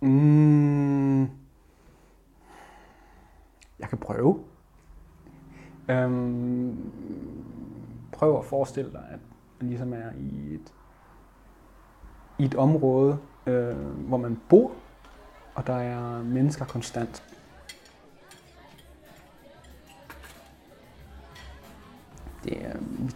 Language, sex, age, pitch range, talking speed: Danish, male, 30-49, 120-135 Hz, 75 wpm